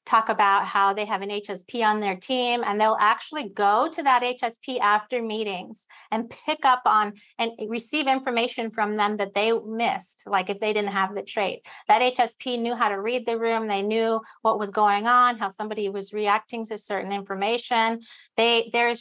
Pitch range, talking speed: 205-245 Hz, 195 wpm